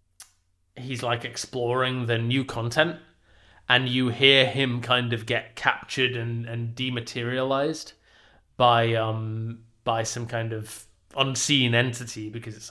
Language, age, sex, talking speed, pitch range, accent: English, 20-39, male, 125 wpm, 110-130 Hz, British